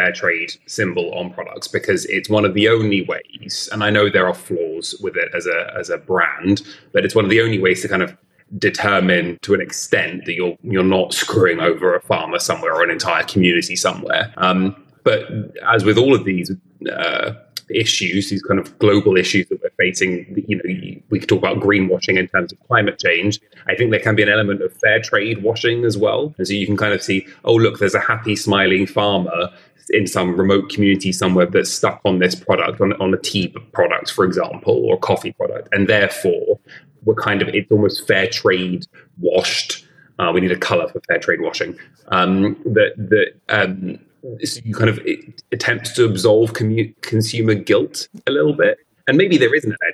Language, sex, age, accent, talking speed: English, male, 30-49, British, 205 wpm